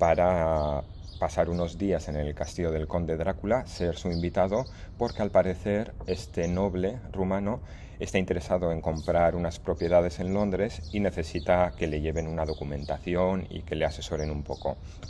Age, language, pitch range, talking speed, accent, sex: 30-49, Spanish, 80-95 Hz, 160 wpm, Spanish, male